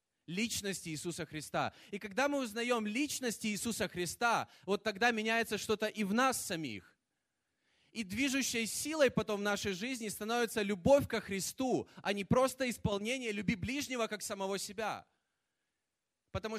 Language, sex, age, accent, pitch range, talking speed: Russian, male, 20-39, native, 145-220 Hz, 140 wpm